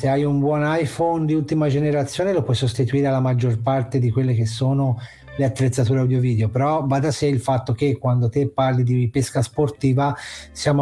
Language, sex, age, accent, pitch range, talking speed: Italian, male, 30-49, native, 125-145 Hz, 195 wpm